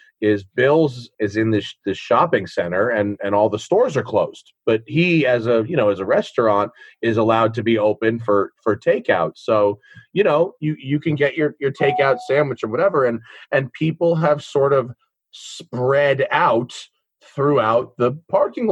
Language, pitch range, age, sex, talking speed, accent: English, 110-150 Hz, 30-49, male, 180 wpm, American